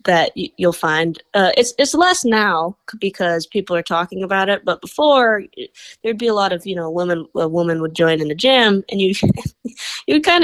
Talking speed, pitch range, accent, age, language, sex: 205 wpm, 170-225 Hz, American, 20-39, English, female